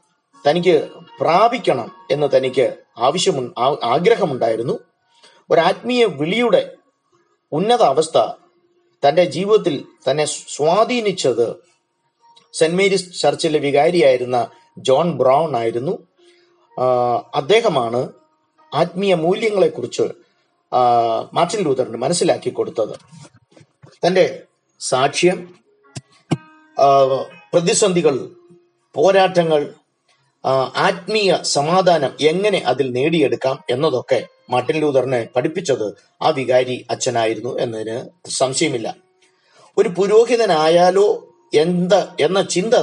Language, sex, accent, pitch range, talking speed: Malayalam, male, native, 145-235 Hz, 75 wpm